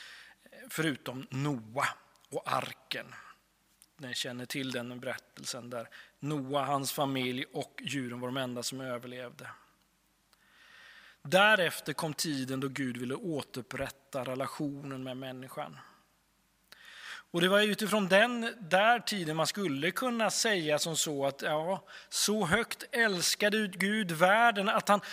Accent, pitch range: native, 135-210 Hz